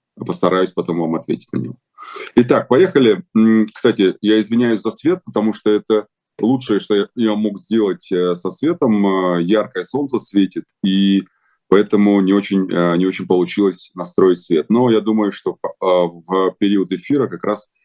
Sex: male